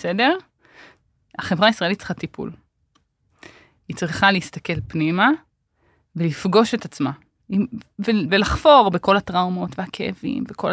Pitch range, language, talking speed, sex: 170-230 Hz, Hebrew, 95 wpm, female